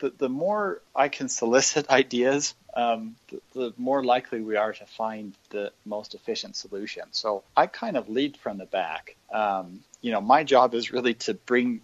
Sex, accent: male, American